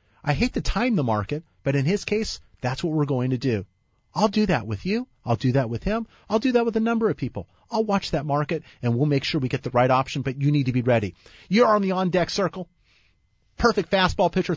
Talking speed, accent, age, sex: 250 wpm, American, 40-59, male